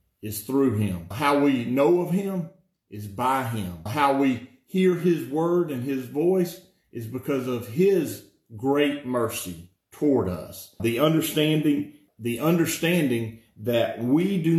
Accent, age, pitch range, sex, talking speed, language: American, 40-59, 115-150 Hz, male, 140 wpm, English